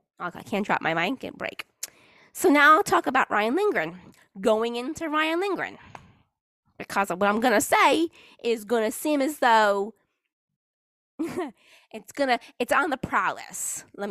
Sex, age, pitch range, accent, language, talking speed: female, 20-39, 180-265 Hz, American, English, 155 wpm